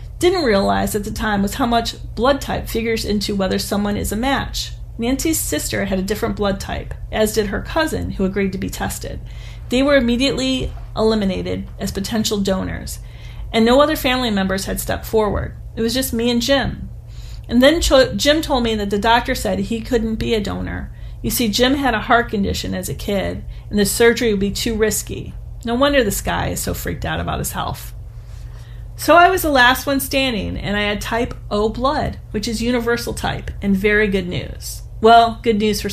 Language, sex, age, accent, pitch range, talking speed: English, female, 40-59, American, 195-245 Hz, 200 wpm